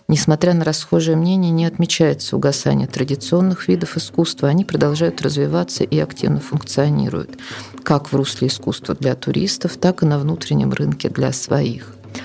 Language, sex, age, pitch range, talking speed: Russian, female, 40-59, 130-165 Hz, 140 wpm